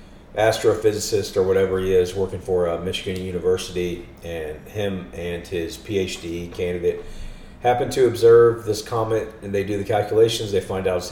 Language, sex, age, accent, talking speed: English, male, 40-59, American, 160 wpm